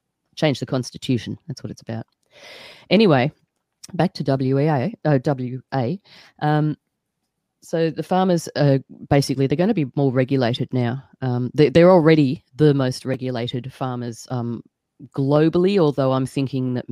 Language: English